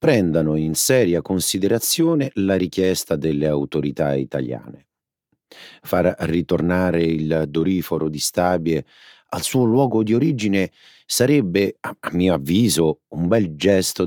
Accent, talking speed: native, 115 wpm